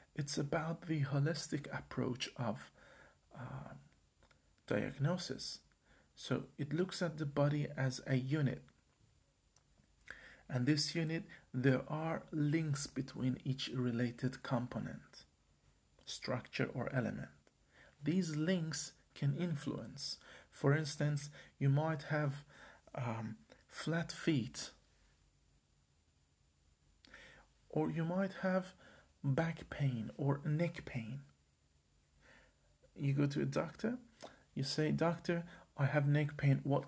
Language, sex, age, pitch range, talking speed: English, male, 40-59, 125-165 Hz, 105 wpm